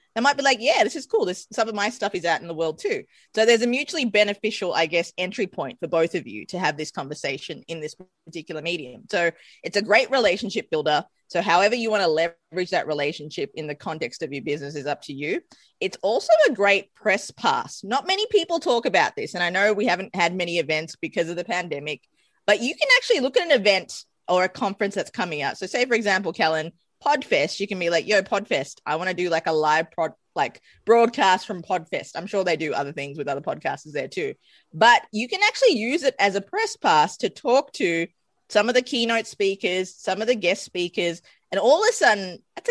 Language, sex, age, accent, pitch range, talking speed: English, female, 20-39, Australian, 170-255 Hz, 235 wpm